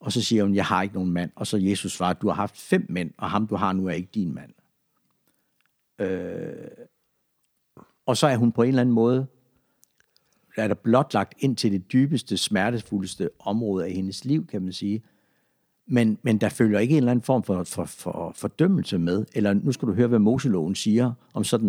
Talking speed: 215 wpm